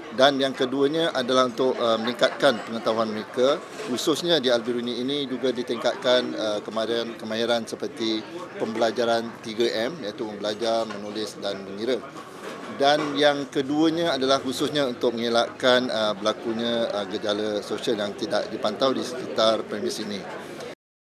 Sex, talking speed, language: male, 115 wpm, Malay